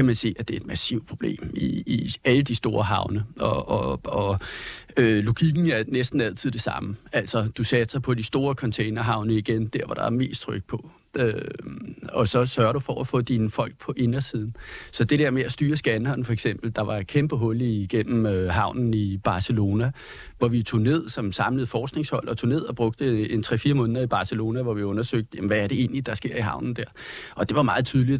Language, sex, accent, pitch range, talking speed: Danish, male, native, 110-135 Hz, 225 wpm